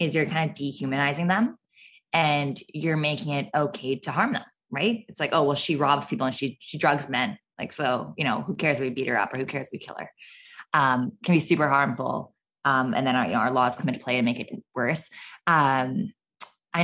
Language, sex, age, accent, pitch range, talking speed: English, female, 20-39, American, 130-155 Hz, 235 wpm